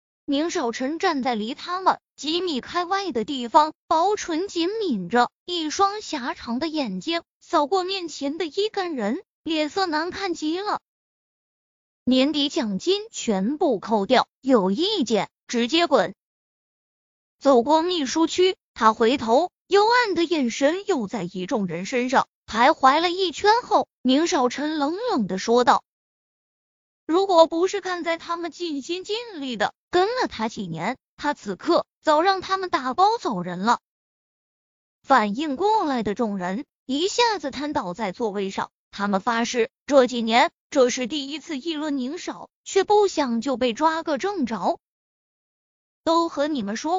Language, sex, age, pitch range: Chinese, female, 20-39, 245-360 Hz